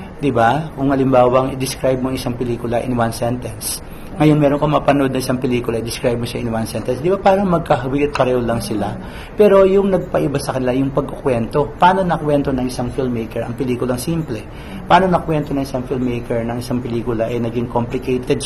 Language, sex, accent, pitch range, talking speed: Filipino, male, native, 120-150 Hz, 190 wpm